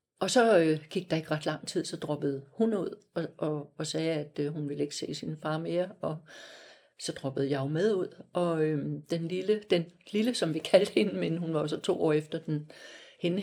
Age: 60-79